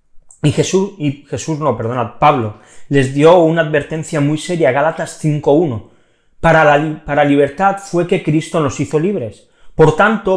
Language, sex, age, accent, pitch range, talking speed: Spanish, male, 30-49, Spanish, 135-180 Hz, 160 wpm